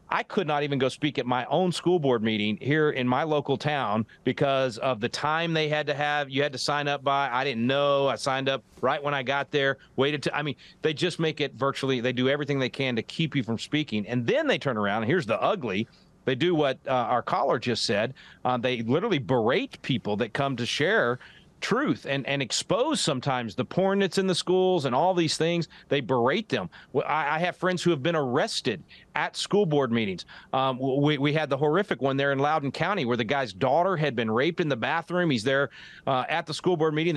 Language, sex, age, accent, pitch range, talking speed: English, male, 40-59, American, 130-160 Hz, 235 wpm